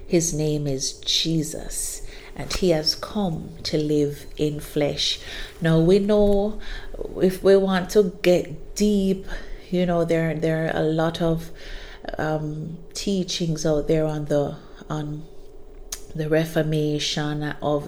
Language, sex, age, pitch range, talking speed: English, female, 30-49, 150-180 Hz, 130 wpm